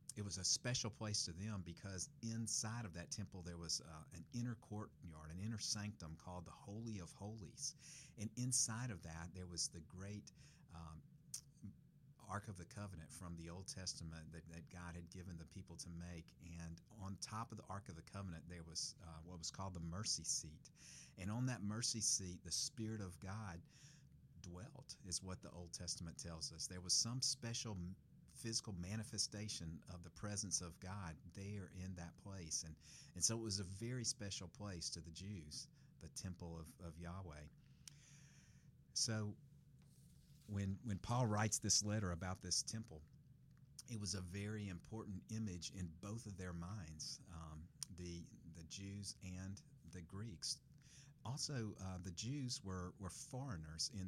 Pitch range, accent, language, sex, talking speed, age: 85-110 Hz, American, English, male, 170 wpm, 50-69